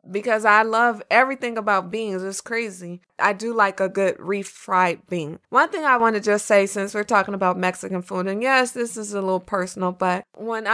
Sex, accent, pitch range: female, American, 195-250 Hz